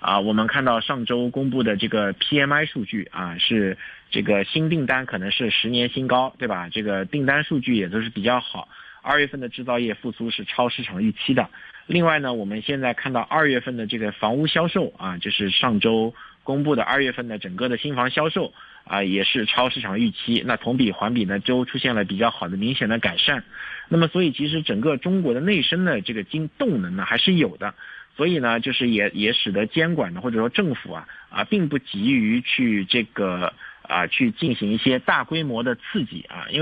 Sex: male